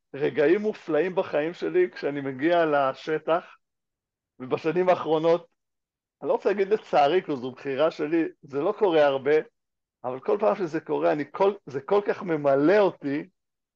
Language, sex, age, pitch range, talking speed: Hebrew, male, 60-79, 145-200 Hz, 140 wpm